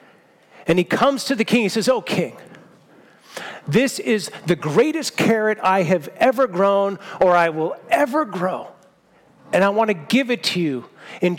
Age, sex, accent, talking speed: 40-59, male, American, 180 wpm